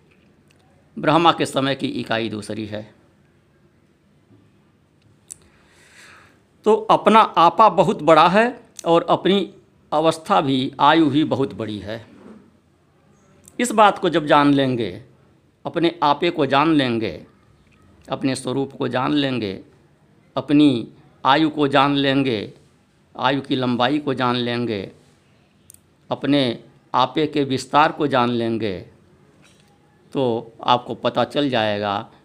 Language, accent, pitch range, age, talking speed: Hindi, native, 115-155 Hz, 50-69, 115 wpm